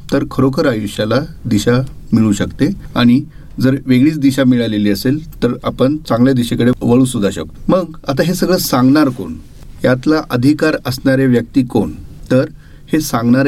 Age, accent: 40-59, native